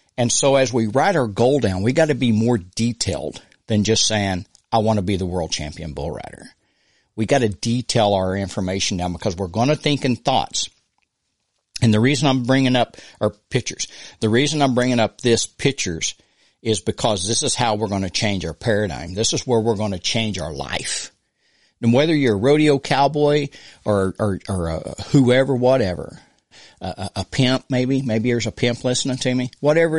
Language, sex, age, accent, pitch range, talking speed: English, male, 60-79, American, 100-125 Hz, 195 wpm